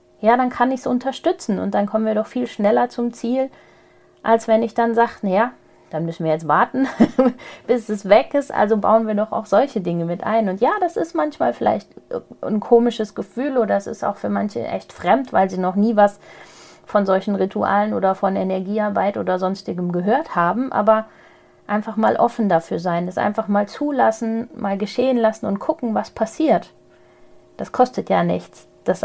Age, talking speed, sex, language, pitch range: 30-49, 190 wpm, female, German, 185-240 Hz